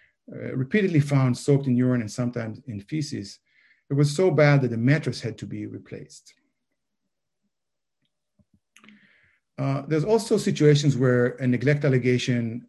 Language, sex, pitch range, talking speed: English, male, 120-145 Hz, 135 wpm